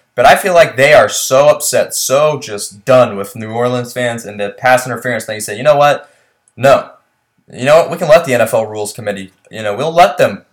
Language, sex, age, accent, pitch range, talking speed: English, male, 20-39, American, 105-130 Hz, 235 wpm